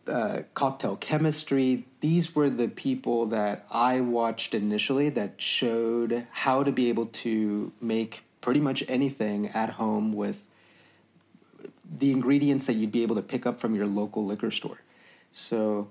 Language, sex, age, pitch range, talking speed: English, male, 30-49, 110-135 Hz, 150 wpm